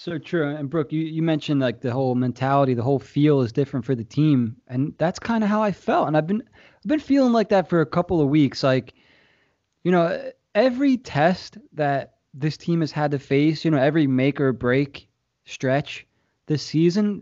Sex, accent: male, American